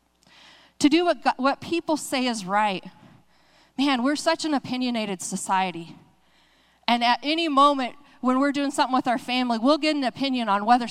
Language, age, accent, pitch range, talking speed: English, 30-49, American, 205-275 Hz, 175 wpm